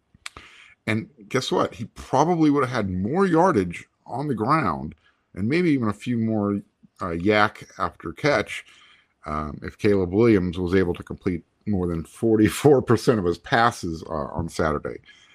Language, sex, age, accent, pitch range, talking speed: English, male, 50-69, American, 80-110 Hz, 155 wpm